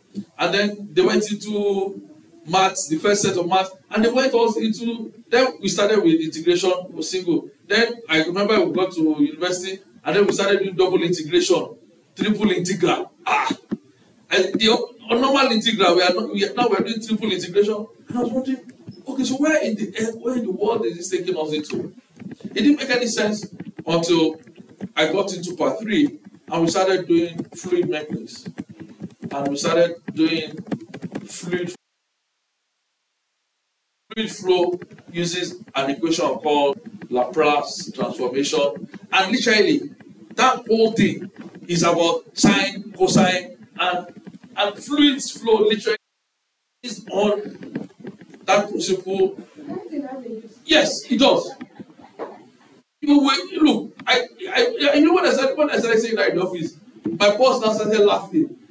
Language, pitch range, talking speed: English, 180-250 Hz, 145 wpm